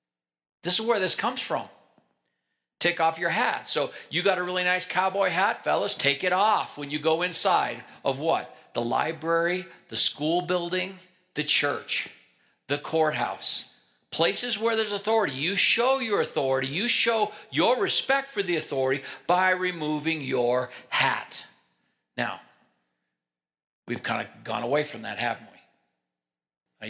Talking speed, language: 150 wpm, English